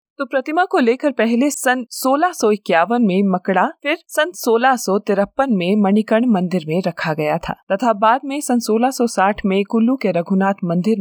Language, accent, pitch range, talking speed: Hindi, native, 180-230 Hz, 160 wpm